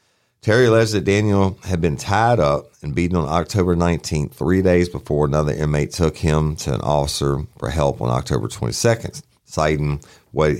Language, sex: English, male